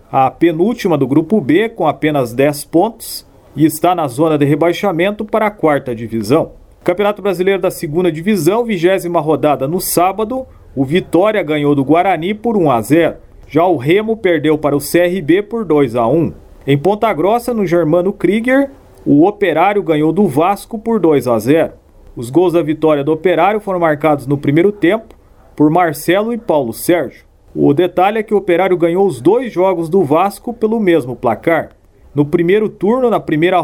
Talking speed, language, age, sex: 175 wpm, Portuguese, 40-59, male